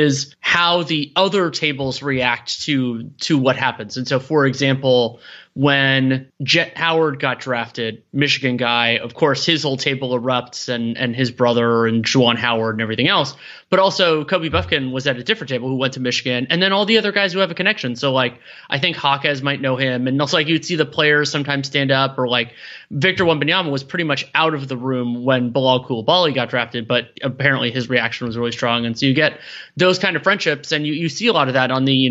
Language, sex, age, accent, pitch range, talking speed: English, male, 20-39, American, 125-150 Hz, 225 wpm